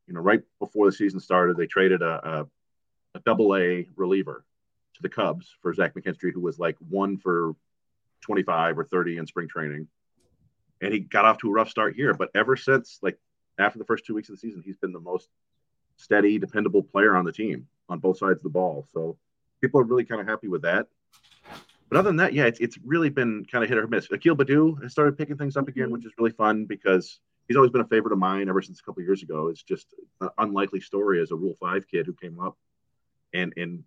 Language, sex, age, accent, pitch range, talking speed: English, male, 30-49, American, 90-120 Hz, 235 wpm